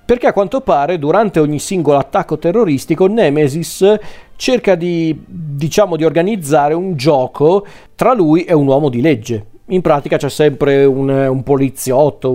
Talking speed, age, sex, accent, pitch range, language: 150 wpm, 40-59, male, native, 130-160 Hz, Italian